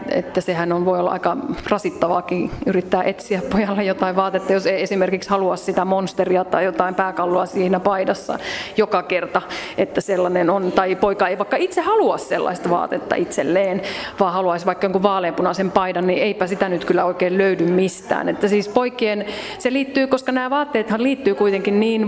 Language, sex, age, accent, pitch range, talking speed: Finnish, female, 30-49, native, 185-230 Hz, 170 wpm